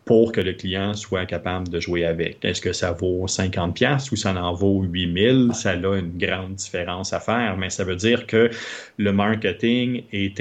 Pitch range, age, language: 95-115 Hz, 30-49, French